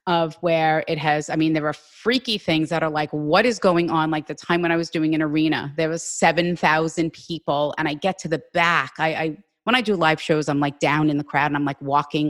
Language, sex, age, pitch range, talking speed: English, female, 30-49, 150-170 Hz, 265 wpm